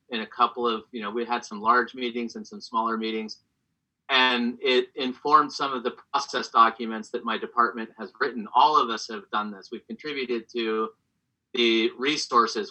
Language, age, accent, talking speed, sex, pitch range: English, 30-49, American, 185 wpm, male, 110-125 Hz